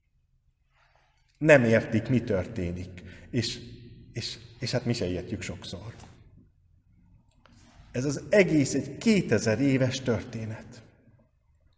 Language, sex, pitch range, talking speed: Hungarian, male, 100-135 Hz, 95 wpm